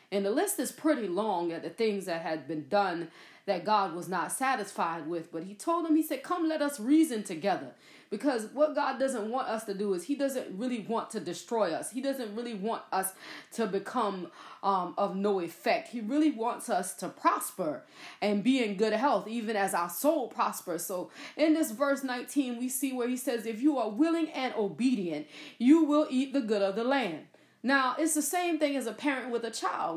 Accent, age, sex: American, 30-49, female